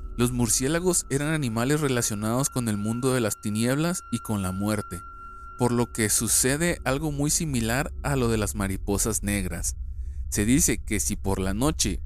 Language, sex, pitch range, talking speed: Spanish, male, 90-130 Hz, 175 wpm